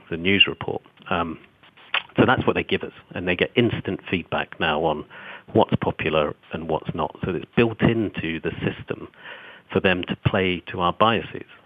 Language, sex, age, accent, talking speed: English, male, 50-69, British, 180 wpm